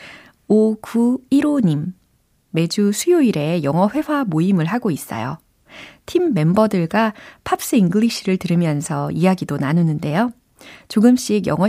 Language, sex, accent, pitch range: Korean, female, native, 165-225 Hz